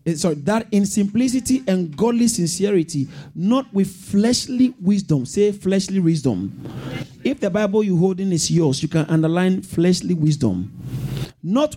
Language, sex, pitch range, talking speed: English, male, 155-230 Hz, 140 wpm